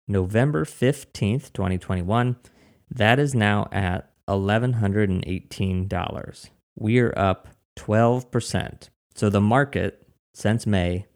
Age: 30-49